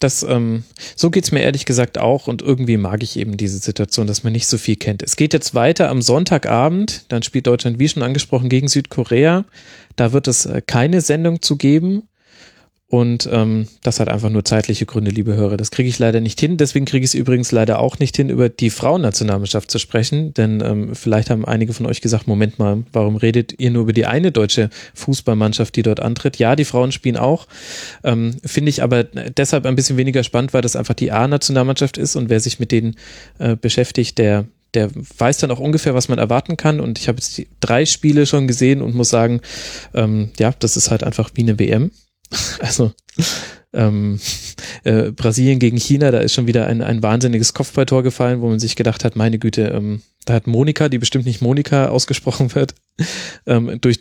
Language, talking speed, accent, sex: German, 205 wpm, German, male